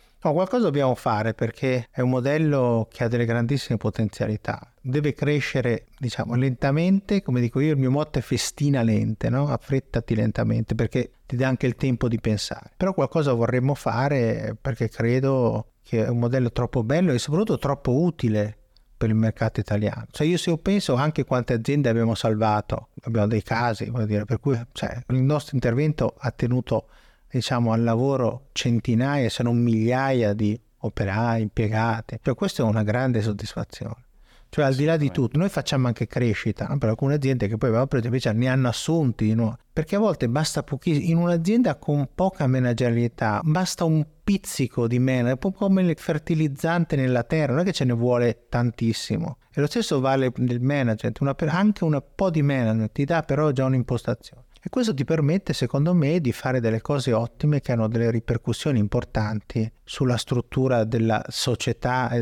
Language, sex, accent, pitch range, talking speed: Italian, male, native, 115-145 Hz, 175 wpm